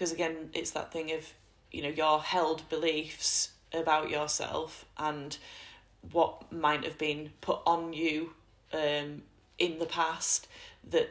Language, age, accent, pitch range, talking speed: English, 10-29, British, 155-180 Hz, 140 wpm